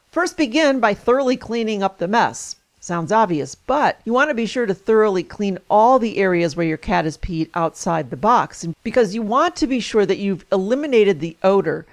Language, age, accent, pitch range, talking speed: English, 40-59, American, 175-225 Hz, 205 wpm